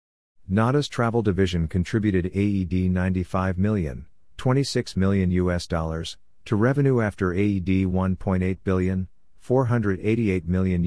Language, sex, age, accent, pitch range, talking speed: English, male, 50-69, American, 90-105 Hz, 105 wpm